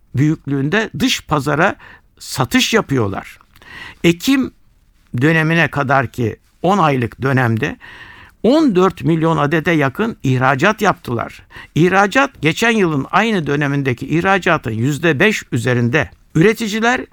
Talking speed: 95 wpm